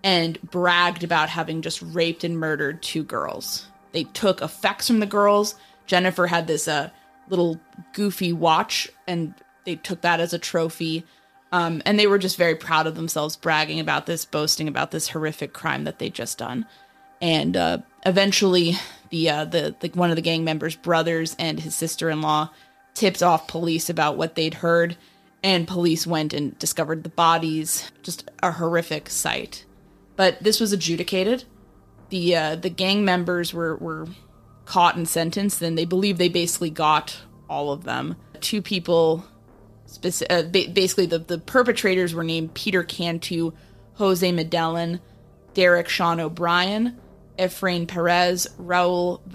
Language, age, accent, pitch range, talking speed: English, 20-39, American, 160-185 Hz, 155 wpm